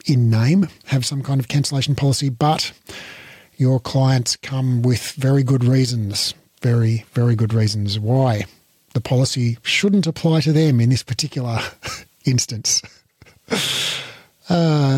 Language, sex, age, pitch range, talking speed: English, male, 40-59, 120-150 Hz, 130 wpm